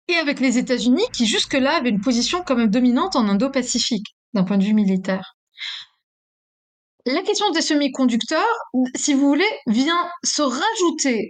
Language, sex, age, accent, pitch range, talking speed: French, female, 20-39, French, 220-305 Hz, 150 wpm